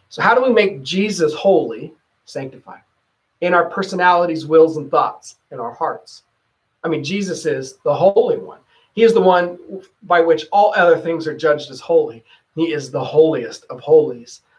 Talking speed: 175 wpm